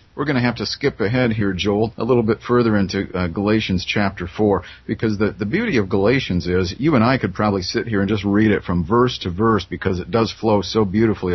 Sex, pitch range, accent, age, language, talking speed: male, 95-125 Hz, American, 50-69, English, 245 wpm